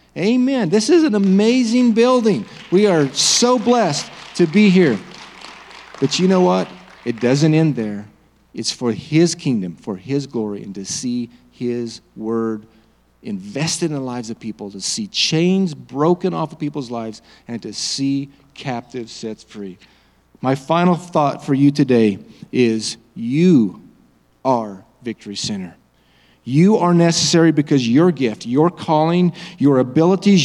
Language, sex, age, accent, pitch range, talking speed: English, male, 40-59, American, 110-170 Hz, 145 wpm